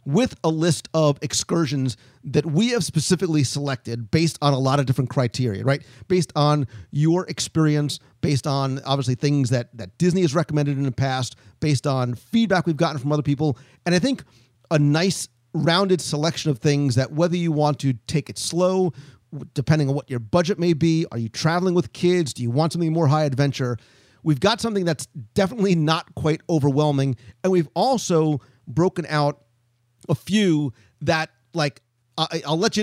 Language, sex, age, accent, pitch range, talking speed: English, male, 40-59, American, 135-170 Hz, 180 wpm